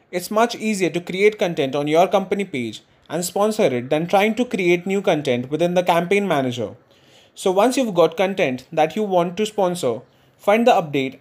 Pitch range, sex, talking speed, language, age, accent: 150-215 Hz, male, 195 wpm, English, 20-39, Indian